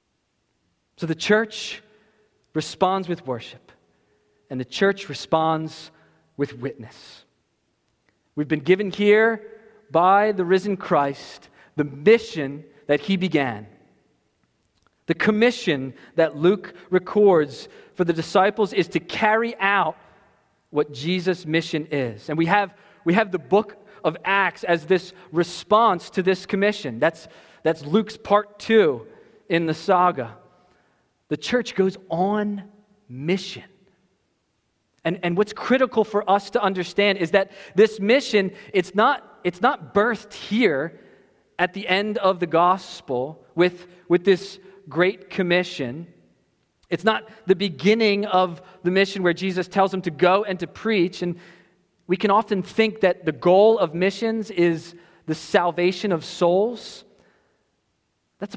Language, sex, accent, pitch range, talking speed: English, male, American, 165-205 Hz, 130 wpm